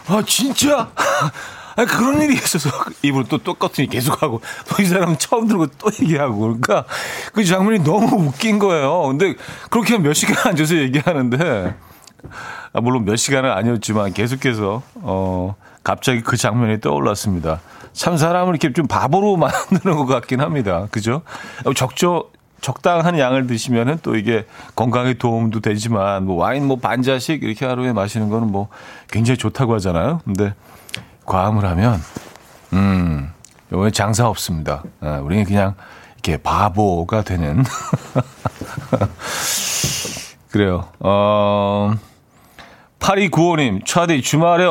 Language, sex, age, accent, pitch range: Korean, male, 40-59, native, 105-165 Hz